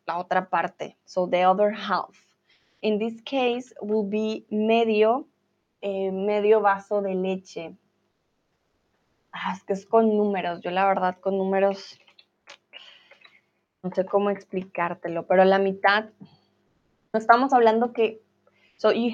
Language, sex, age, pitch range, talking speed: Spanish, female, 20-39, 190-225 Hz, 130 wpm